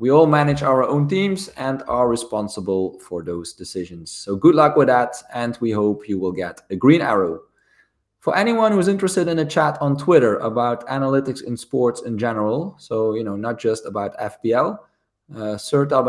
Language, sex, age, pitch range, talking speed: English, male, 20-39, 110-140 Hz, 185 wpm